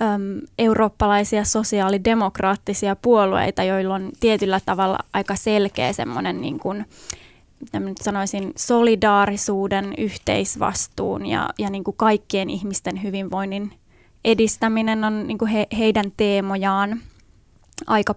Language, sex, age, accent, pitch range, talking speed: Finnish, female, 20-39, native, 200-225 Hz, 95 wpm